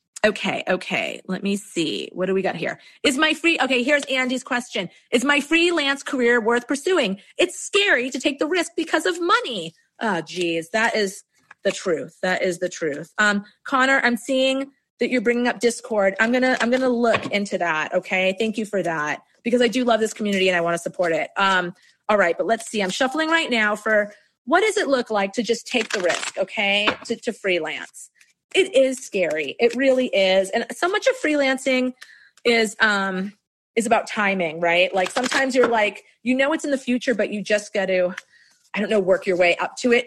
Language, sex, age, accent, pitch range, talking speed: English, female, 30-49, American, 195-265 Hz, 210 wpm